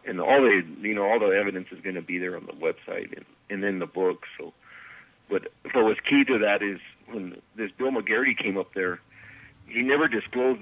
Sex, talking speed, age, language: male, 225 wpm, 50-69, English